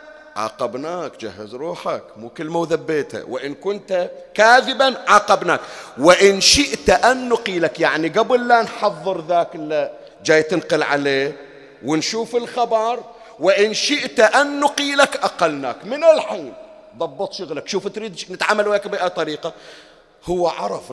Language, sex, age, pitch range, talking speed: Arabic, male, 40-59, 150-205 Hz, 120 wpm